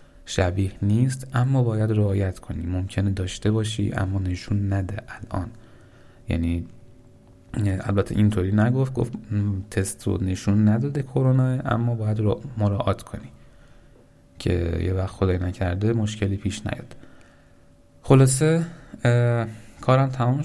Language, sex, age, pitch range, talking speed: Persian, male, 30-49, 100-120 Hz, 115 wpm